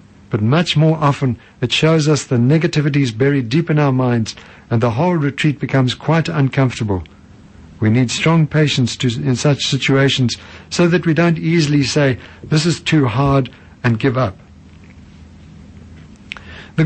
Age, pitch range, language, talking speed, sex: 60-79, 120-155 Hz, English, 150 wpm, male